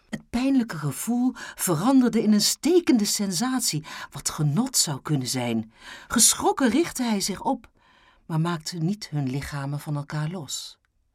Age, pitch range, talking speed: 50-69, 150-235 Hz, 140 wpm